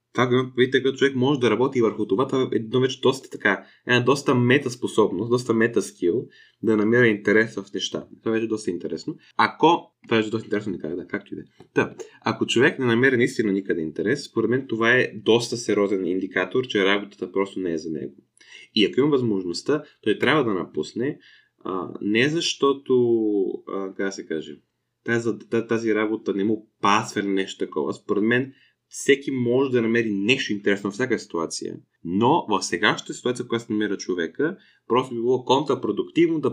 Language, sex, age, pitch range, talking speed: Bulgarian, male, 20-39, 105-125 Hz, 170 wpm